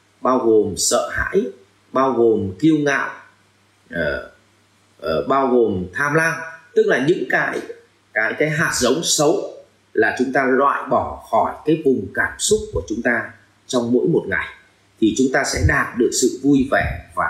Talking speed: 175 wpm